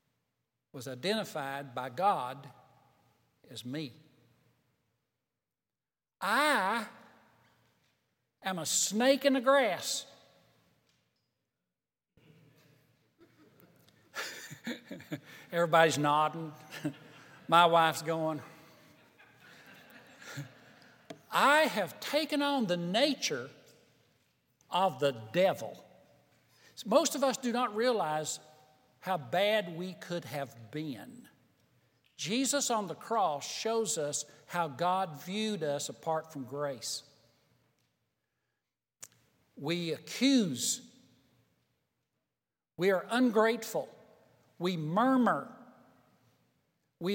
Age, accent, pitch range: 60-79, American, 145-220 Hz